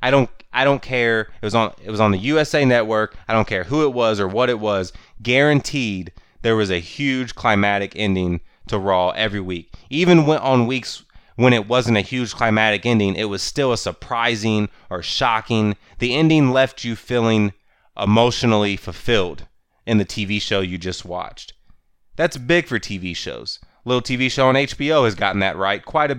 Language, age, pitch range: English, 20-39, 105-140 Hz